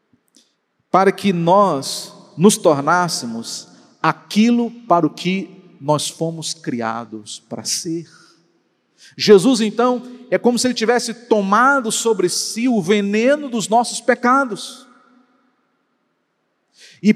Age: 50-69